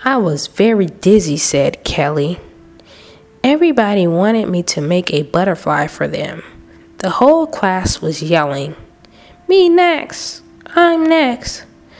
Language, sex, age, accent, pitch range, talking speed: English, female, 20-39, American, 150-245 Hz, 120 wpm